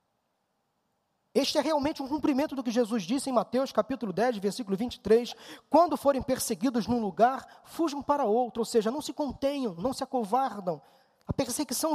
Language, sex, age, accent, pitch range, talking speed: Portuguese, male, 20-39, Brazilian, 235-285 Hz, 165 wpm